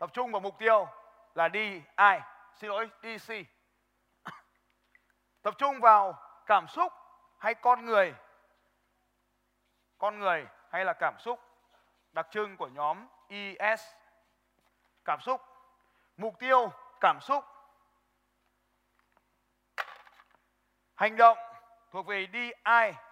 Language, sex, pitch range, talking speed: Vietnamese, male, 205-260 Hz, 105 wpm